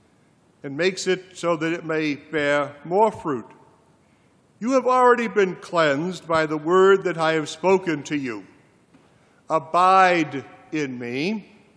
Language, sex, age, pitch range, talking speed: English, male, 50-69, 150-190 Hz, 140 wpm